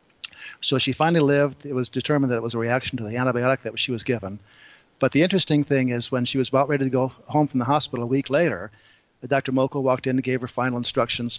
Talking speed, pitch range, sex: 250 wpm, 115-135 Hz, male